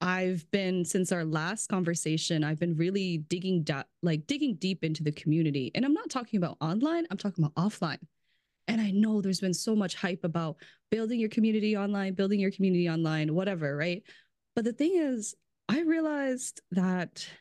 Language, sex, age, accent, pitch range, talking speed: English, female, 20-39, American, 180-260 Hz, 185 wpm